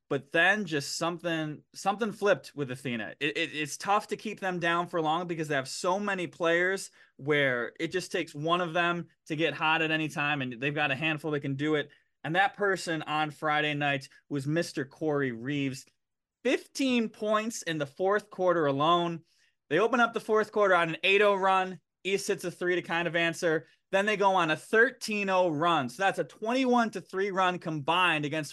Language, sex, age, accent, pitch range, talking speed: English, male, 20-39, American, 150-190 Hz, 200 wpm